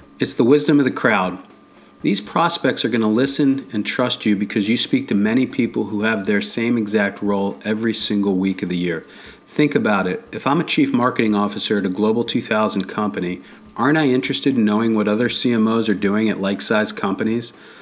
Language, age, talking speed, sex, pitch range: English, 40-59, 205 wpm, male, 105-120 Hz